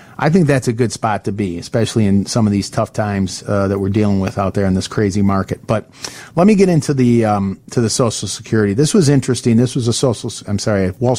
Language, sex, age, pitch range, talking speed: English, male, 40-59, 110-140 Hz, 255 wpm